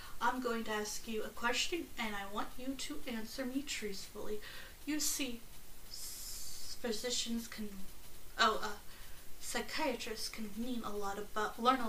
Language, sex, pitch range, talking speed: English, female, 215-260 Hz, 125 wpm